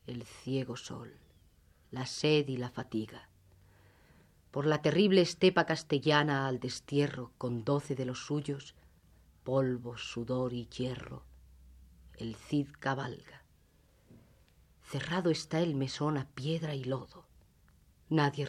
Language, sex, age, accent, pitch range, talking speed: Spanish, female, 40-59, Spanish, 95-150 Hz, 115 wpm